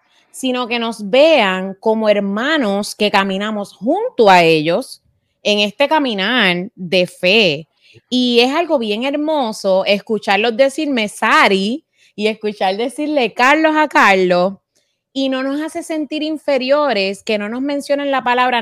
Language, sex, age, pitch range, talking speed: Spanish, female, 20-39, 195-275 Hz, 135 wpm